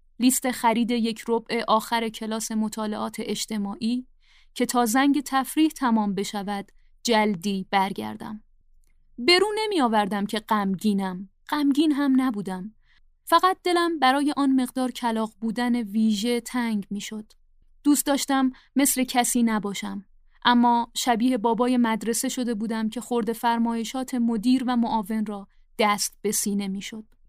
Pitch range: 215-270 Hz